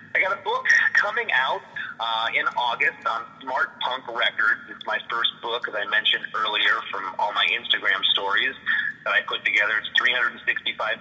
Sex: male